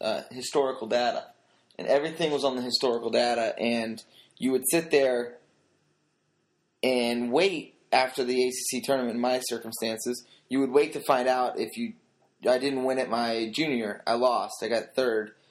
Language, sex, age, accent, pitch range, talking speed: English, male, 20-39, American, 115-140 Hz, 165 wpm